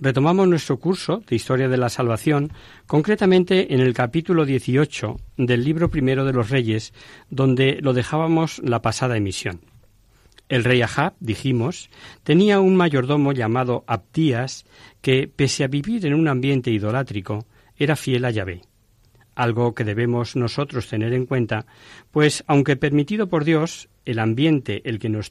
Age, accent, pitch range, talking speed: 50-69, Spanish, 115-145 Hz, 150 wpm